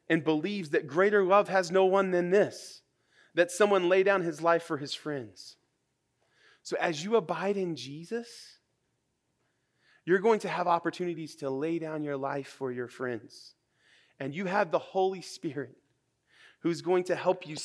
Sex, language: male, English